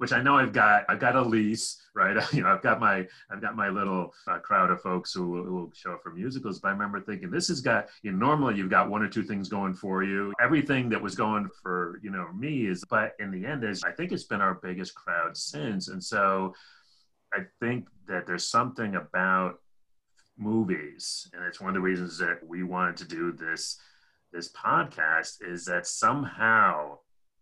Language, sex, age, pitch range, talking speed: English, male, 30-49, 90-110 Hz, 215 wpm